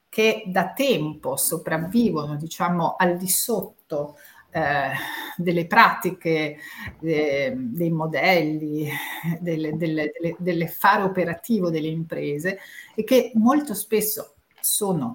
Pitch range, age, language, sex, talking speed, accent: 160-210 Hz, 50-69, Italian, female, 100 wpm, native